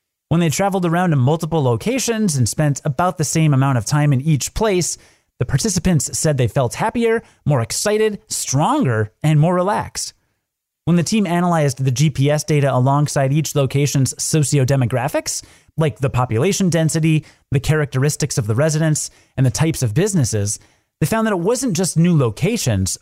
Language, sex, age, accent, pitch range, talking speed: English, male, 30-49, American, 125-175 Hz, 165 wpm